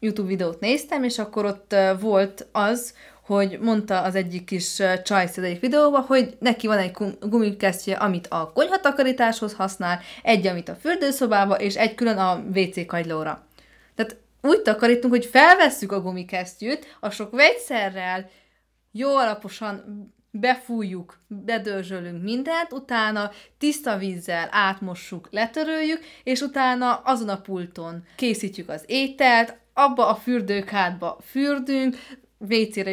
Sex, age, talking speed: female, 30-49, 120 wpm